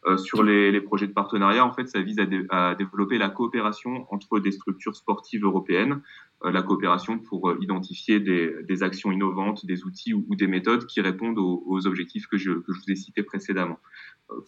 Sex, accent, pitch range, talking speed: male, French, 95-105 Hz, 215 wpm